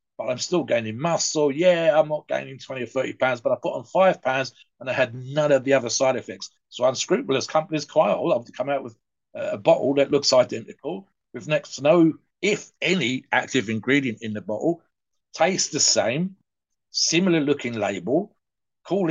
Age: 50-69